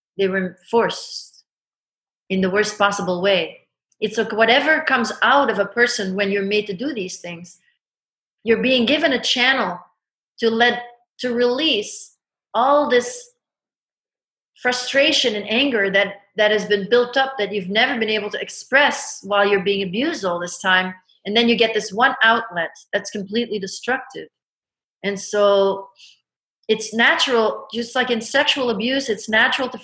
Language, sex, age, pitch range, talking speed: German, female, 40-59, 200-245 Hz, 160 wpm